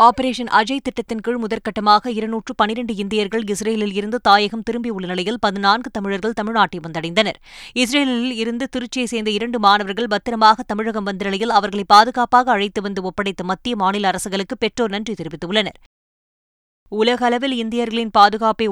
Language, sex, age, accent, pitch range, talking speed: Tamil, female, 20-39, native, 195-230 Hz, 125 wpm